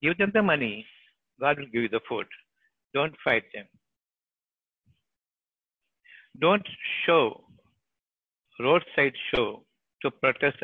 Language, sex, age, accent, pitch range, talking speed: Tamil, male, 60-79, native, 125-155 Hz, 105 wpm